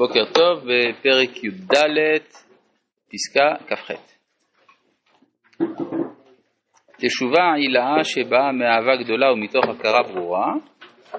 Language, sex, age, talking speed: Hebrew, male, 40-59, 80 wpm